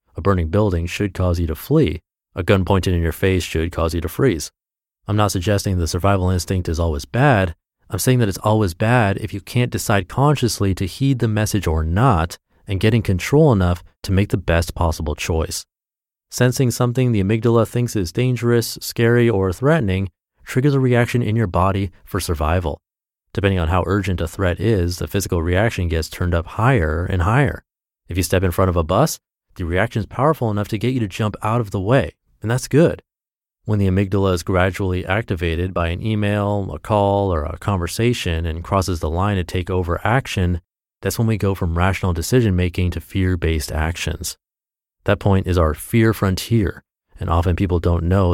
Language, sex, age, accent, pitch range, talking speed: English, male, 30-49, American, 90-110 Hz, 200 wpm